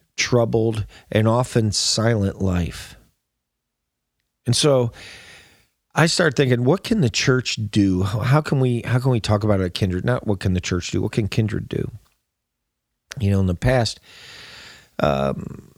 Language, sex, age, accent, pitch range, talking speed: English, male, 40-59, American, 95-115 Hz, 155 wpm